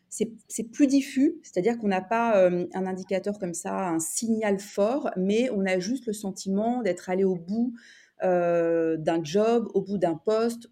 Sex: female